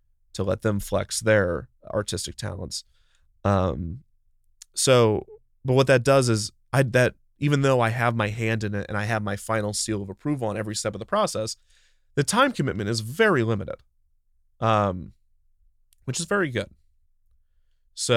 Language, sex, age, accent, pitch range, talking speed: English, male, 30-49, American, 100-115 Hz, 165 wpm